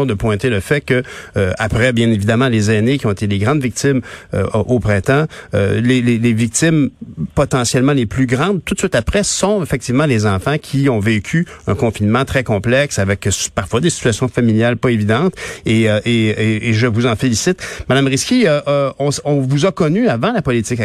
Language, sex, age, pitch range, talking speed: French, male, 50-69, 110-150 Hz, 210 wpm